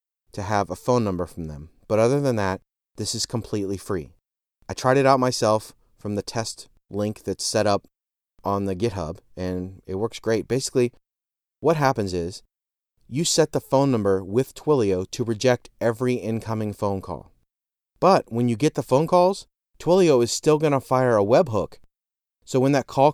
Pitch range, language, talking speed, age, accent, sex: 95-125 Hz, English, 180 wpm, 30-49, American, male